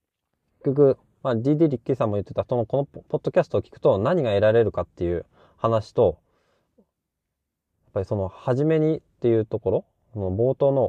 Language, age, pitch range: Japanese, 20-39, 95-140 Hz